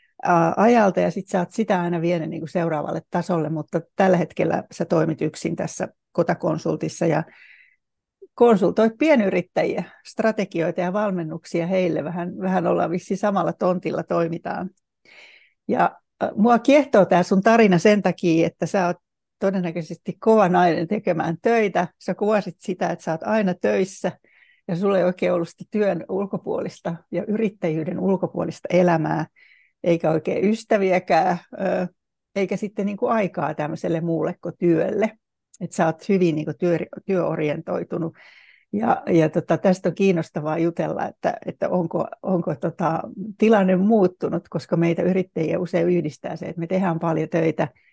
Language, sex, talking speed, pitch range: Finnish, female, 140 wpm, 170-210 Hz